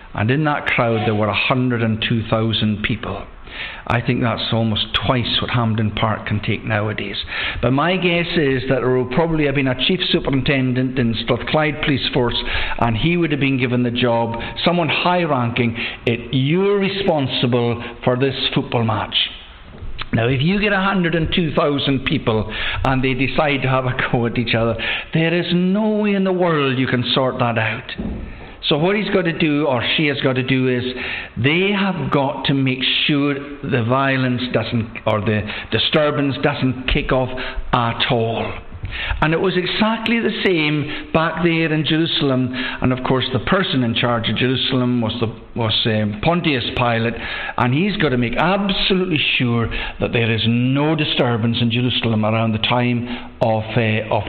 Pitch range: 115-150 Hz